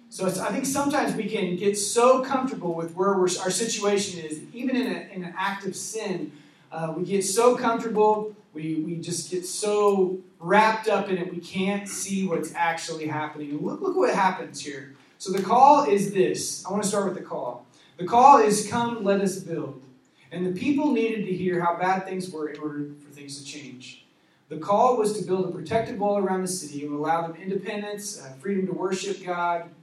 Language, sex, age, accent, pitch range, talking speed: English, male, 30-49, American, 170-215 Hz, 205 wpm